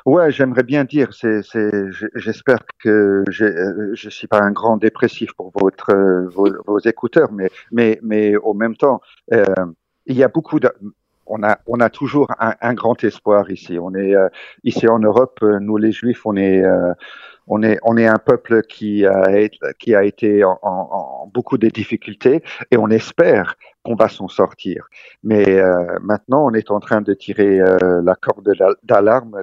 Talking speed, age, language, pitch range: 185 wpm, 50-69, French, 95-115 Hz